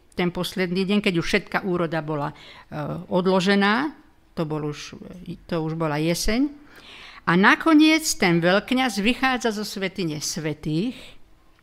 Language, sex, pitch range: Slovak, female, 165-215 Hz